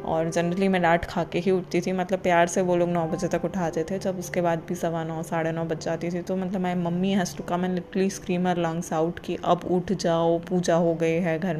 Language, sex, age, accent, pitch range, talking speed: Hindi, female, 20-39, native, 165-190 Hz, 255 wpm